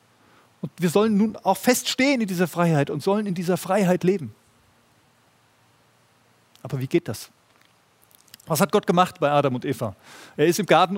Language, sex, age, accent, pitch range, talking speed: German, male, 30-49, German, 125-195 Hz, 170 wpm